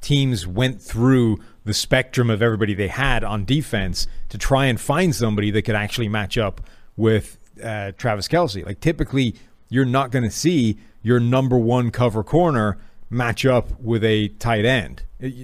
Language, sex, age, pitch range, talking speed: English, male, 30-49, 105-125 Hz, 165 wpm